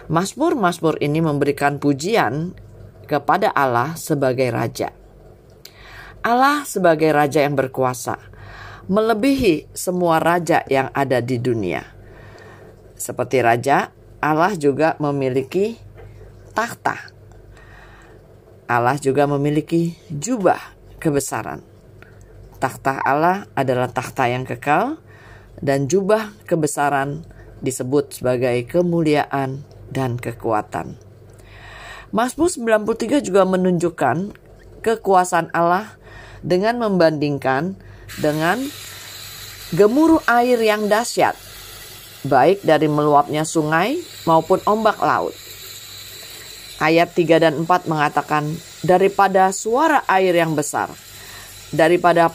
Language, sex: Indonesian, female